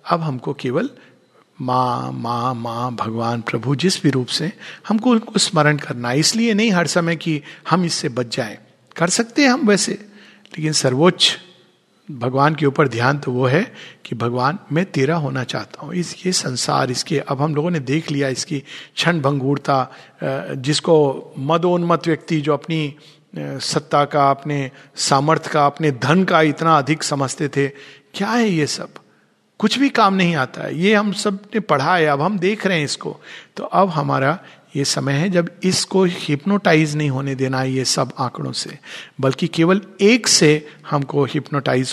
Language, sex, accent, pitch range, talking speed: Hindi, male, native, 130-170 Hz, 175 wpm